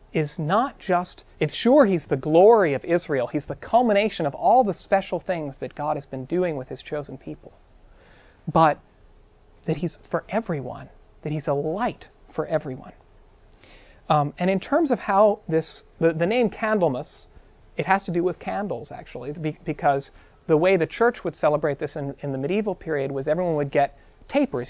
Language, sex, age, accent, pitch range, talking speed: English, male, 40-59, American, 140-180 Hz, 180 wpm